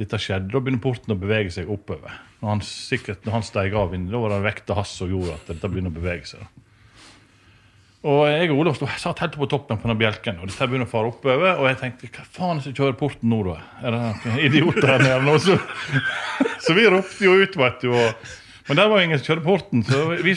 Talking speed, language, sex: 240 wpm, English, male